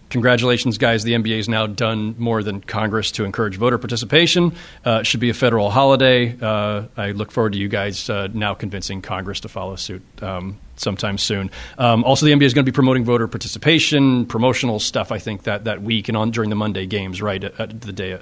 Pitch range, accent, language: 110-140 Hz, American, English